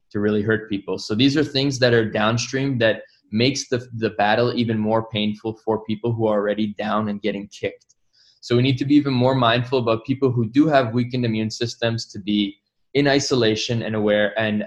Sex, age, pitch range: male, 20-39, 110-130 Hz